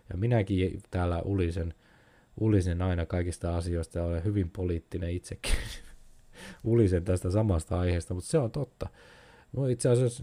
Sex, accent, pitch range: male, native, 85-115 Hz